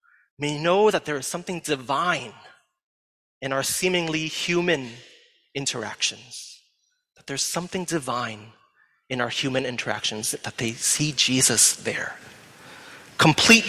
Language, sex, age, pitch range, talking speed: English, male, 30-49, 135-190 Hz, 115 wpm